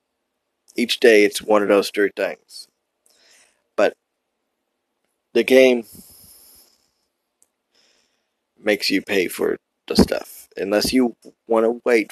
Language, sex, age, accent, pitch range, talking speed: English, male, 20-39, American, 100-115 Hz, 110 wpm